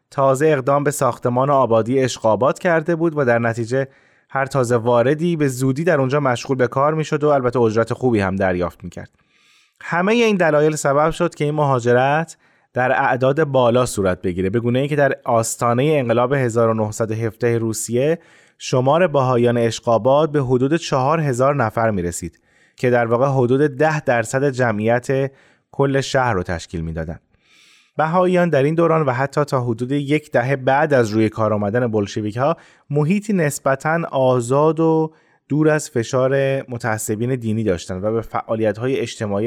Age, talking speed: 20-39, 160 wpm